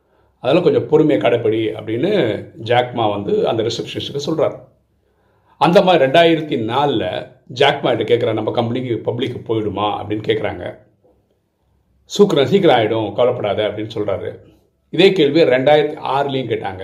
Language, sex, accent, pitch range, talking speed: Tamil, male, native, 110-170 Hz, 70 wpm